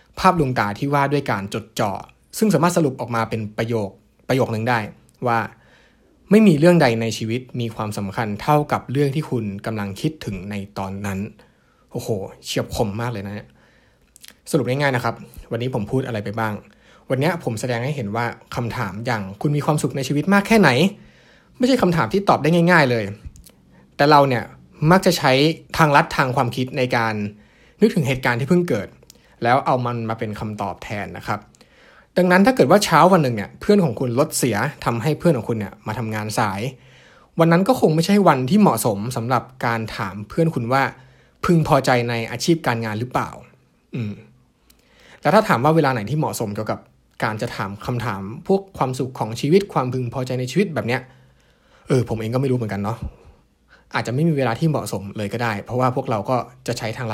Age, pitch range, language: 20-39, 110-150 Hz, Thai